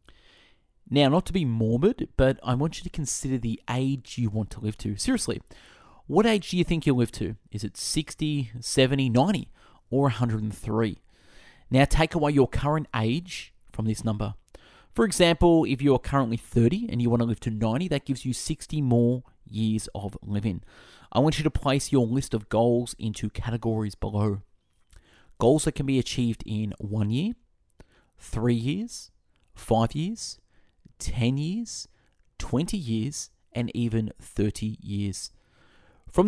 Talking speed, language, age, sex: 160 wpm, English, 30-49, male